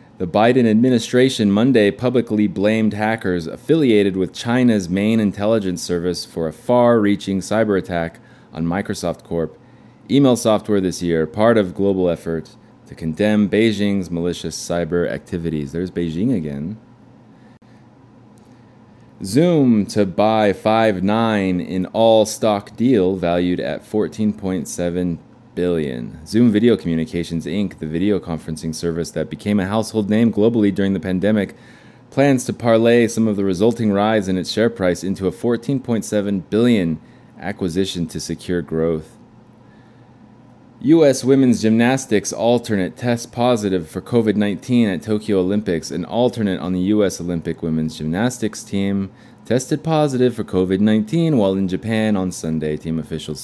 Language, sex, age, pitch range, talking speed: English, male, 20-39, 90-115 Hz, 135 wpm